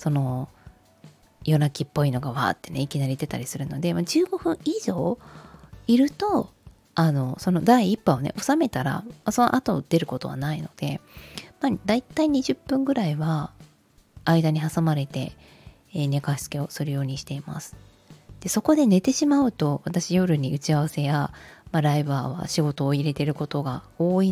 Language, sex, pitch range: Japanese, female, 140-215 Hz